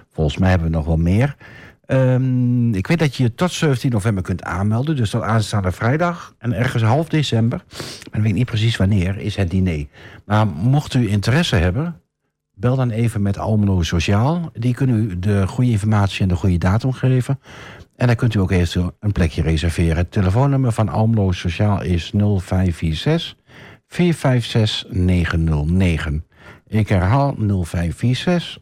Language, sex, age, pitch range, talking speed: Dutch, male, 60-79, 90-125 Hz, 160 wpm